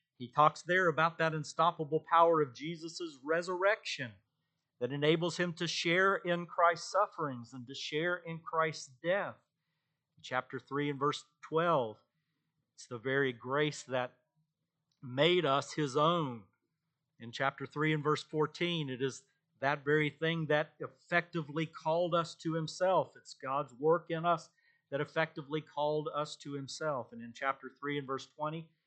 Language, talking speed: English, 150 wpm